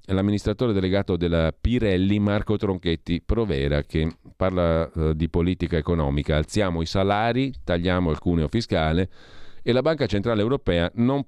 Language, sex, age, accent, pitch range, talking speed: Italian, male, 40-59, native, 80-105 Hz, 135 wpm